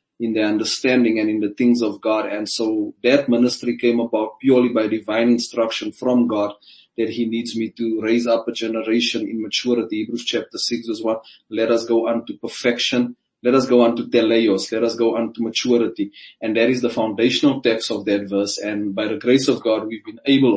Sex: male